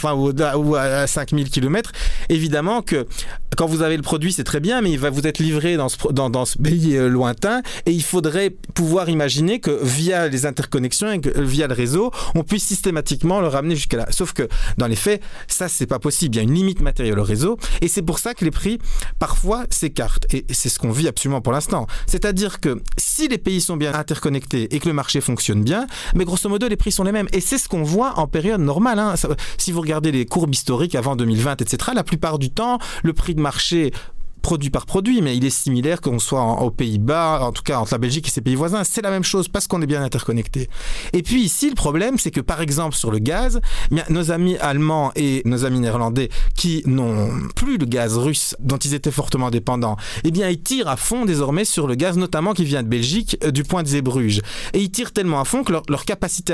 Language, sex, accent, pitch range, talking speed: French, male, French, 135-185 Hz, 235 wpm